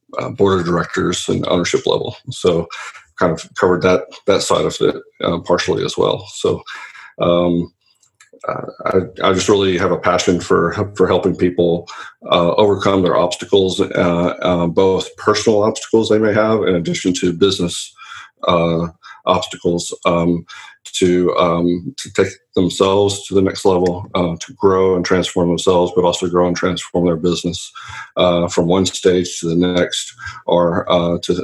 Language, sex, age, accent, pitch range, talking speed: English, male, 40-59, American, 85-95 Hz, 160 wpm